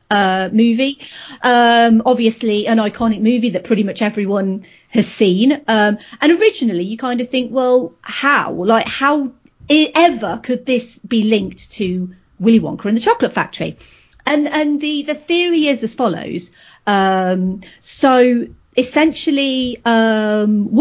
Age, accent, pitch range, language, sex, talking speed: 40-59, British, 205-250 Hz, English, female, 140 wpm